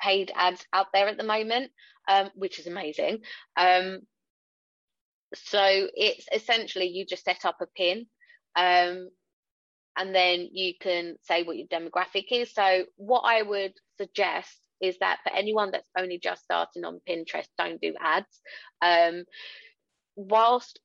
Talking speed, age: 145 wpm, 20-39